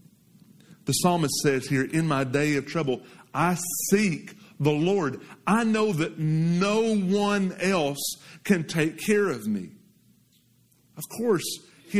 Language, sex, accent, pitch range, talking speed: English, male, American, 145-190 Hz, 135 wpm